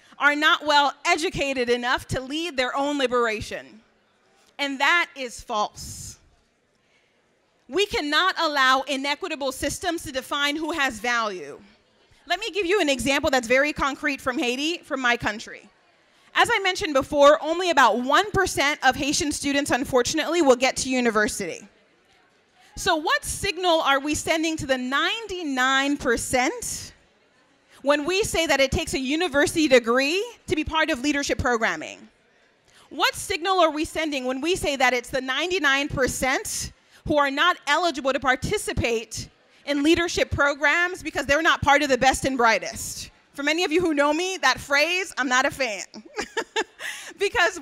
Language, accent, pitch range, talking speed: English, American, 270-345 Hz, 150 wpm